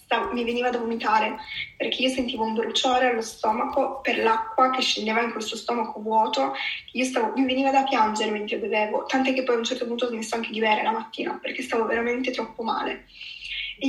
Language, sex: Italian, female